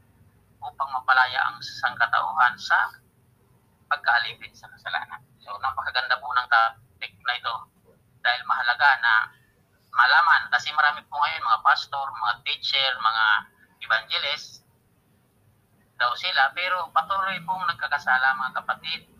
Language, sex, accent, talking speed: English, male, Filipino, 115 wpm